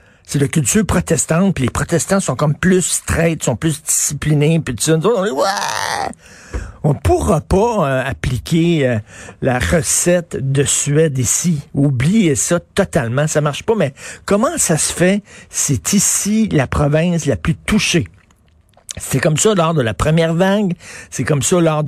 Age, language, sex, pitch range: 50-69, French, male, 130-175 Hz